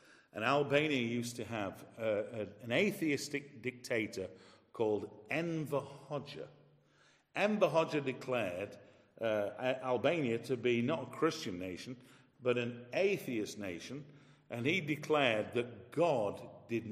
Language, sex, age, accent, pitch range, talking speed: English, male, 50-69, British, 120-150 Hz, 115 wpm